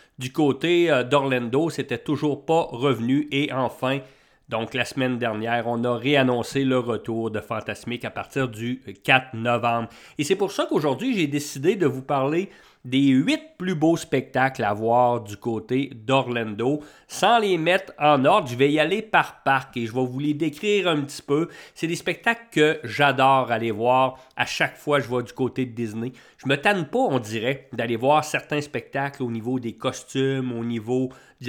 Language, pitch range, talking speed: English, 120-145 Hz, 190 wpm